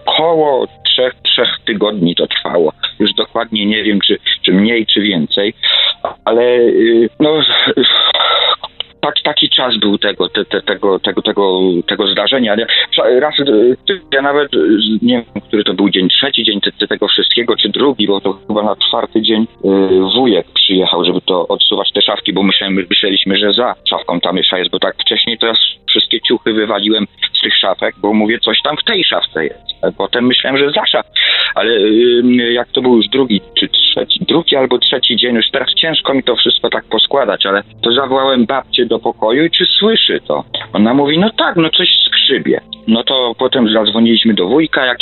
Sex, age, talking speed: male, 40-59, 175 wpm